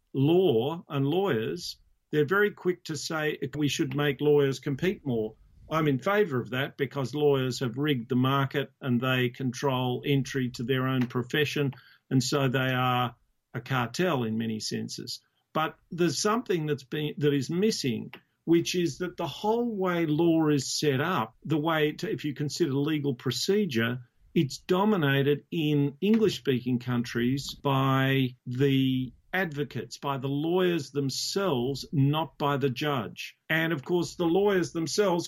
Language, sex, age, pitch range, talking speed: English, male, 50-69, 130-160 Hz, 155 wpm